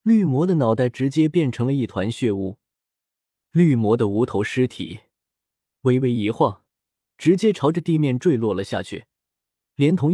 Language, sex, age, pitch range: Chinese, male, 20-39, 110-165 Hz